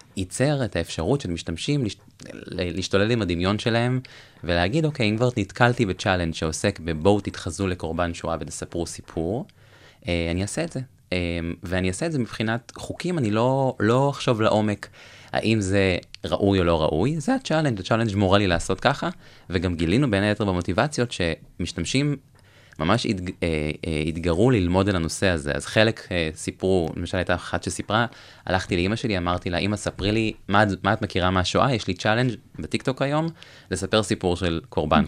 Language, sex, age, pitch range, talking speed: Hebrew, male, 20-39, 85-120 Hz, 155 wpm